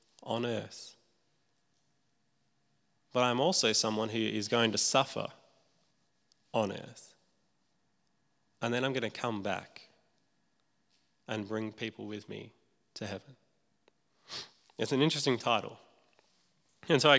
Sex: male